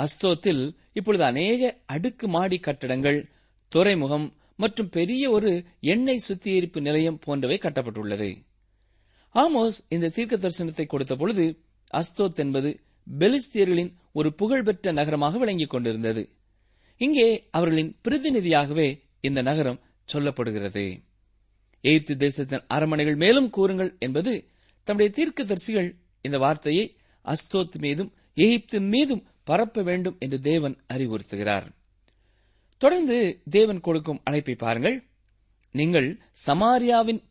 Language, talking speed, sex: Tamil, 95 wpm, male